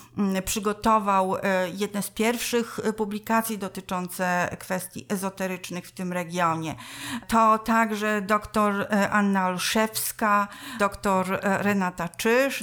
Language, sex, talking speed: Polish, female, 90 wpm